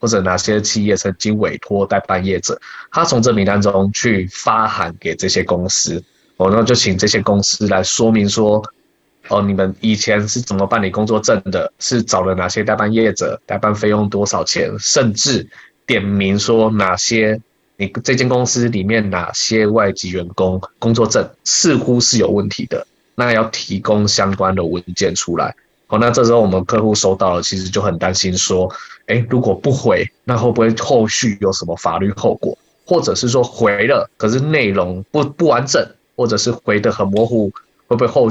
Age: 20-39